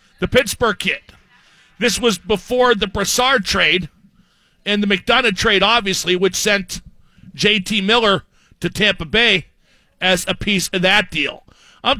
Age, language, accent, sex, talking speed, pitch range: 50-69, English, American, male, 140 wpm, 190-240 Hz